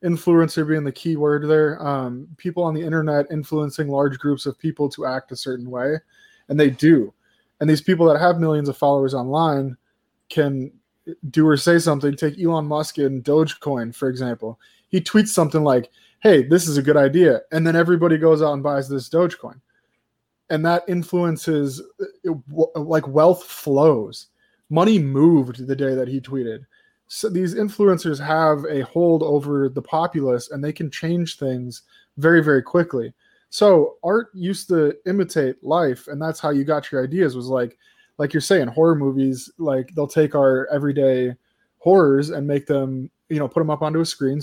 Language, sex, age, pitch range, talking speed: English, male, 20-39, 140-170 Hz, 175 wpm